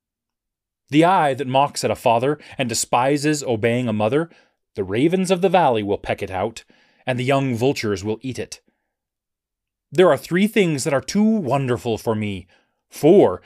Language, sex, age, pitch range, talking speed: English, male, 30-49, 110-155 Hz, 175 wpm